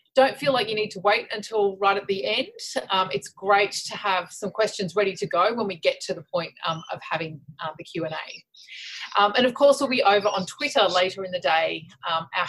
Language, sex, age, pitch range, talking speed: English, female, 30-49, 185-235 Hz, 230 wpm